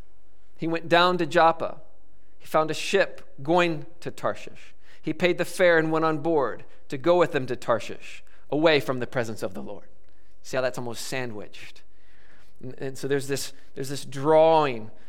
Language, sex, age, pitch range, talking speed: English, male, 40-59, 105-165 Hz, 180 wpm